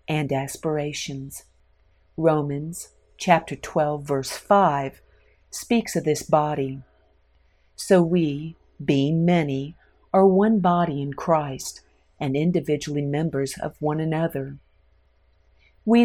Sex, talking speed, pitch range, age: female, 100 wpm, 140-175 Hz, 50-69